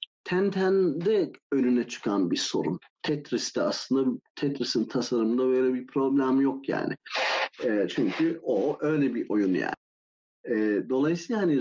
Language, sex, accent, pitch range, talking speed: Turkish, male, native, 115-155 Hz, 125 wpm